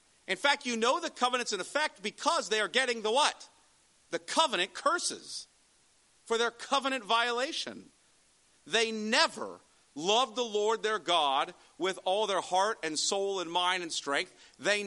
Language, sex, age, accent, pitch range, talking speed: English, male, 50-69, American, 180-240 Hz, 155 wpm